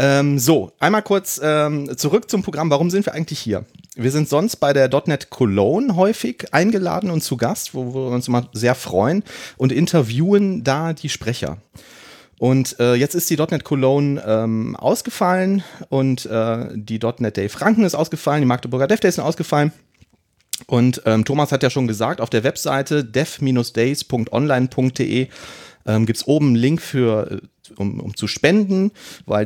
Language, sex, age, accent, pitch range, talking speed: German, male, 30-49, German, 110-150 Hz, 165 wpm